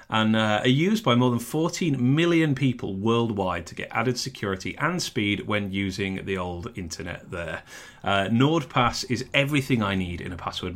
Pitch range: 95-130 Hz